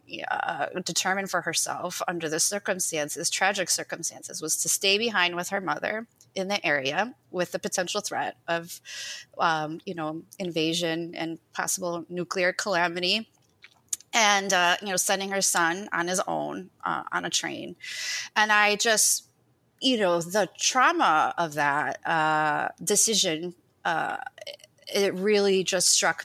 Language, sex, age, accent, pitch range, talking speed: English, female, 20-39, American, 170-220 Hz, 140 wpm